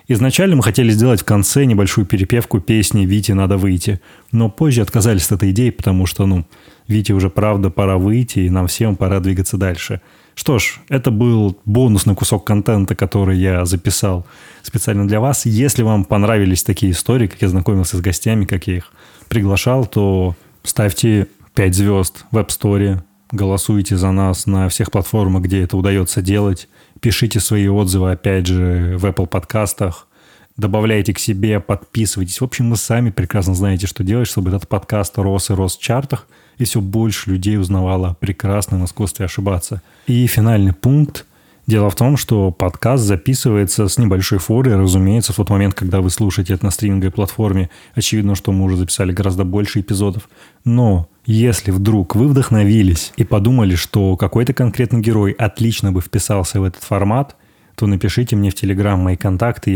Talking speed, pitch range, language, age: 165 wpm, 95-110 Hz, Russian, 20-39